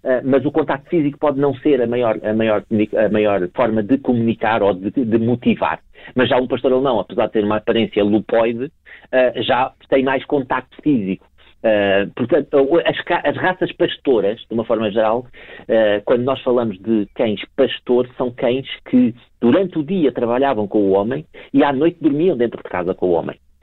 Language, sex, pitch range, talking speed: Portuguese, male, 115-160 Hz, 195 wpm